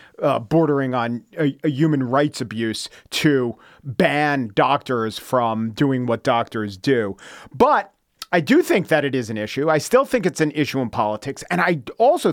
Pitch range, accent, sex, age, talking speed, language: 145-230 Hz, American, male, 40-59, 175 wpm, English